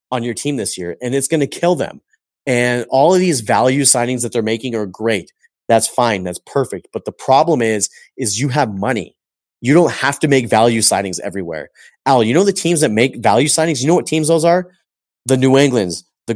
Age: 30-49